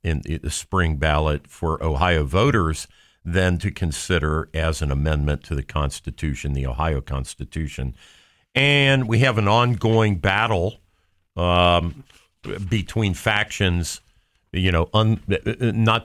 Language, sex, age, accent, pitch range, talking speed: English, male, 50-69, American, 80-100 Hz, 120 wpm